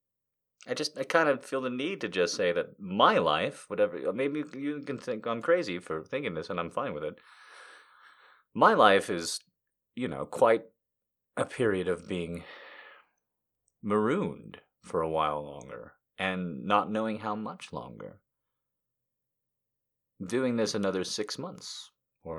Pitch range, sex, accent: 105-145 Hz, male, American